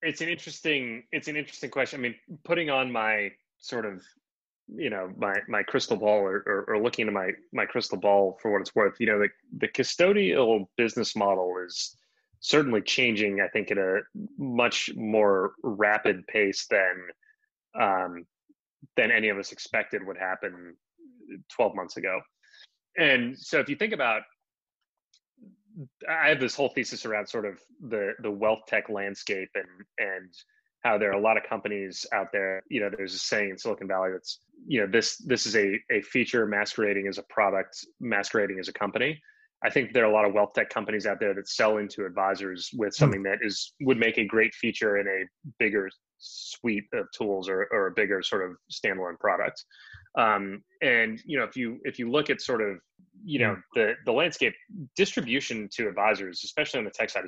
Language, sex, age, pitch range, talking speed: English, male, 30-49, 100-140 Hz, 190 wpm